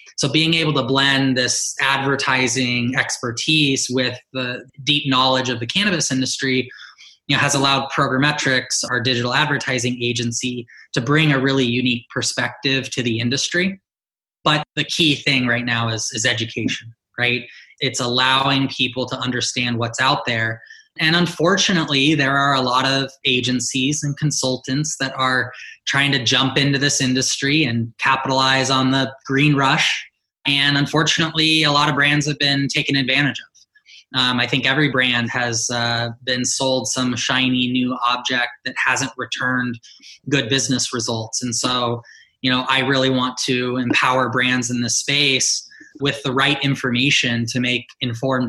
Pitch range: 125-140 Hz